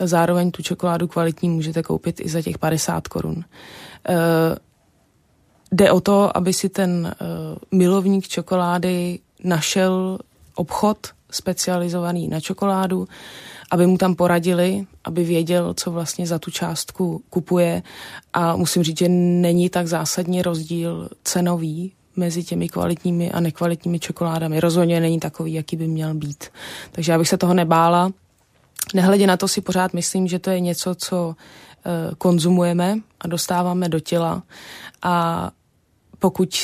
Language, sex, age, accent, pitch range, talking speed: Czech, female, 20-39, native, 165-180 Hz, 140 wpm